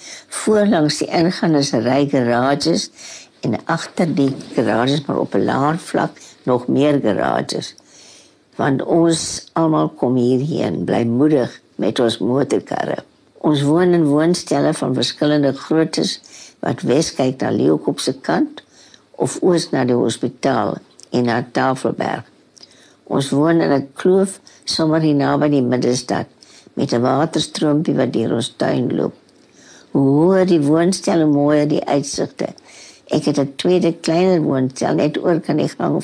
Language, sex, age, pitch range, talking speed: Dutch, female, 60-79, 135-165 Hz, 145 wpm